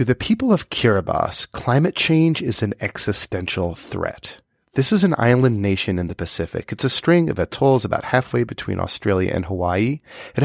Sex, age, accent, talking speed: male, 30-49, American, 180 wpm